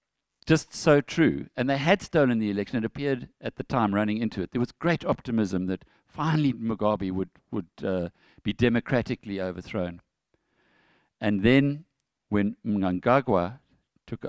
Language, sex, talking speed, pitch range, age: English, male, 145 wpm, 95-120 Hz, 50-69